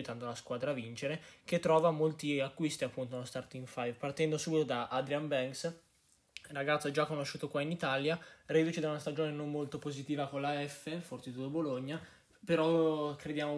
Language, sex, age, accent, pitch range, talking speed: Italian, male, 20-39, native, 130-155 Hz, 170 wpm